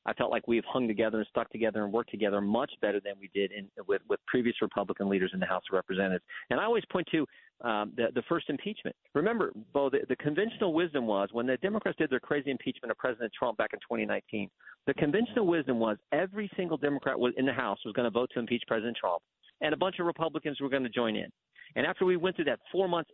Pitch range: 125-185 Hz